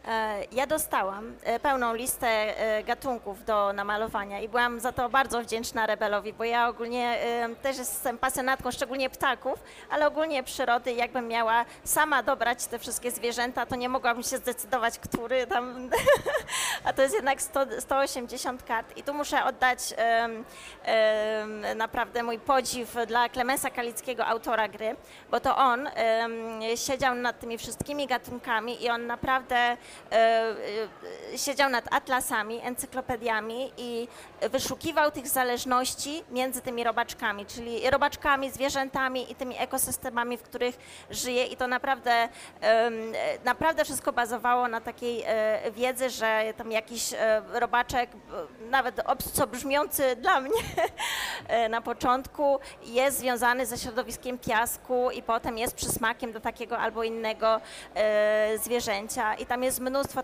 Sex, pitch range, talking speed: female, 230-260 Hz, 125 wpm